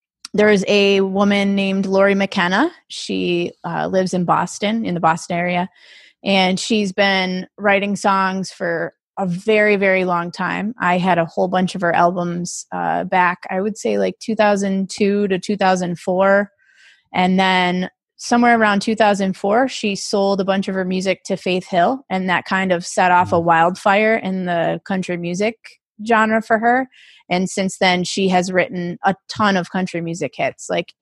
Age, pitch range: 20-39, 180-205 Hz